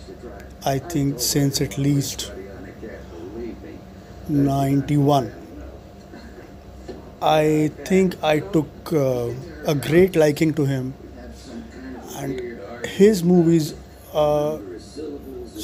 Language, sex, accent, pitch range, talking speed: English, male, Indian, 140-175 Hz, 75 wpm